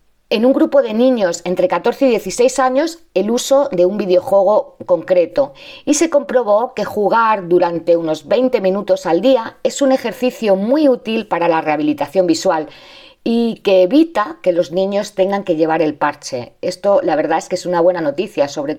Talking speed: 180 wpm